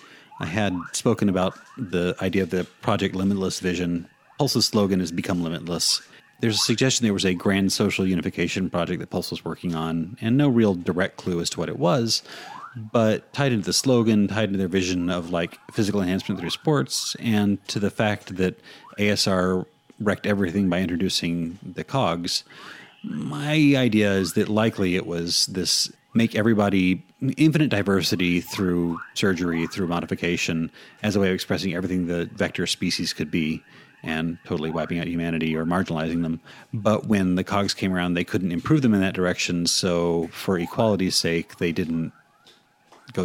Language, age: English, 30-49